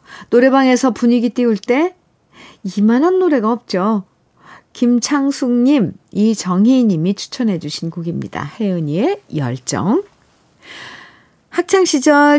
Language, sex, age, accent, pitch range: Korean, female, 50-69, native, 175-260 Hz